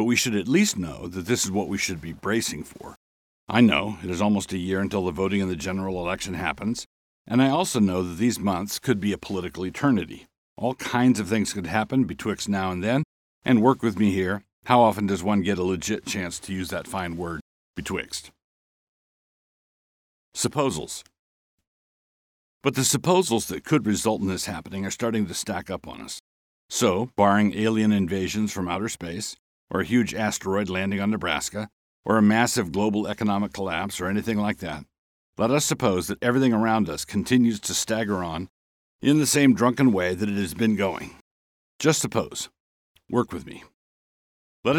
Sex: male